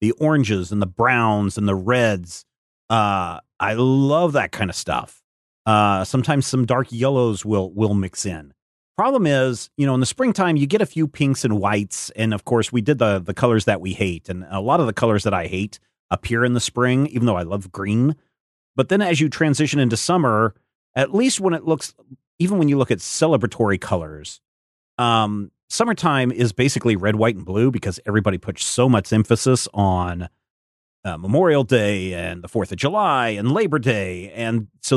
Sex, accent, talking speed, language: male, American, 195 wpm, English